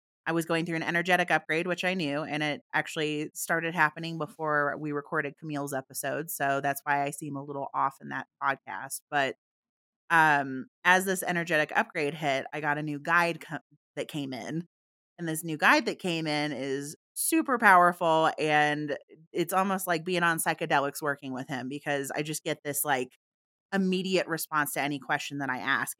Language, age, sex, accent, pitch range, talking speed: English, 30-49, female, American, 145-175 Hz, 185 wpm